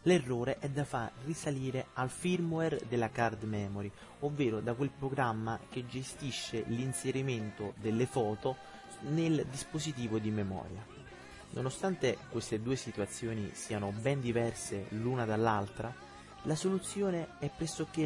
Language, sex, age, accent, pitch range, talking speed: Italian, male, 30-49, native, 110-140 Hz, 120 wpm